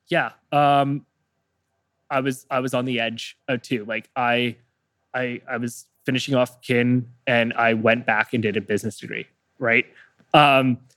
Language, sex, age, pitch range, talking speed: English, male, 20-39, 115-135 Hz, 165 wpm